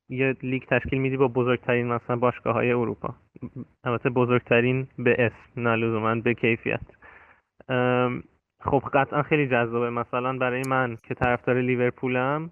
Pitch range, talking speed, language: 120-140 Hz, 135 wpm, Persian